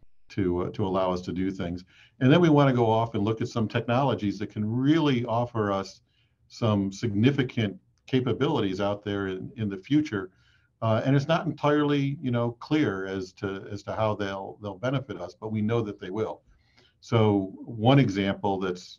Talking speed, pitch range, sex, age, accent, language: 195 wpm, 95-120 Hz, male, 50-69, American, English